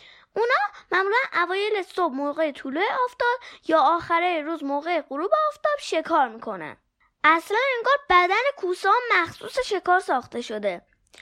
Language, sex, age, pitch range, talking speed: Persian, female, 10-29, 300-415 Hz, 125 wpm